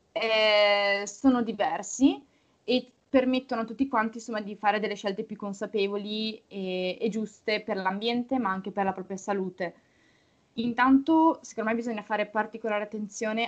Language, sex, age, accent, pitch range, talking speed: Italian, female, 20-39, native, 200-225 Hz, 145 wpm